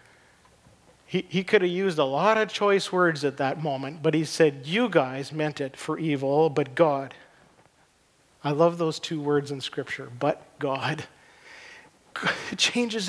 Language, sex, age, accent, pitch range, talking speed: English, male, 50-69, American, 145-175 Hz, 160 wpm